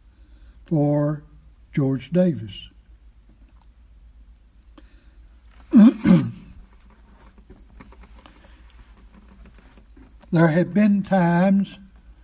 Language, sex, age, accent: English, male, 60-79, American